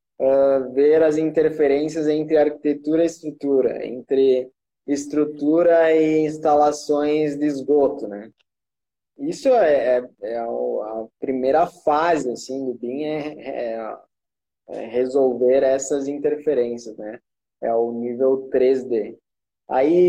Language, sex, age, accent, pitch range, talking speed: Portuguese, male, 20-39, Brazilian, 130-150 Hz, 105 wpm